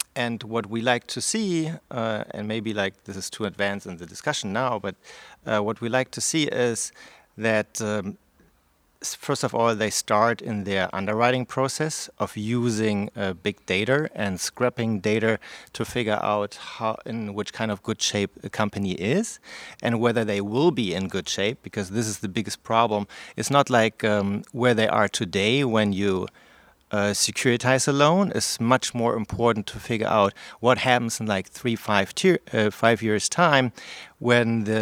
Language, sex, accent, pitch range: English, male, German, 105-120 Hz